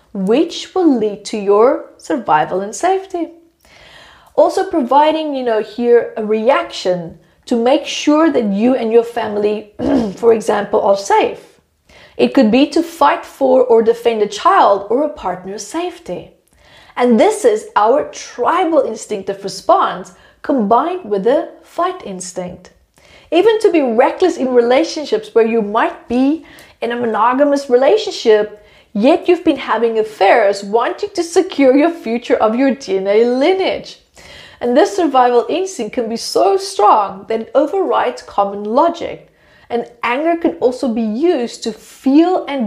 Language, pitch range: English, 220-325 Hz